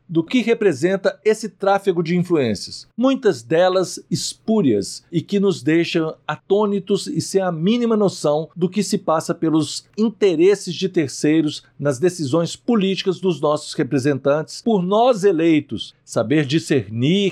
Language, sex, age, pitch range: Portuguese, male, 50-69, 155-210 Hz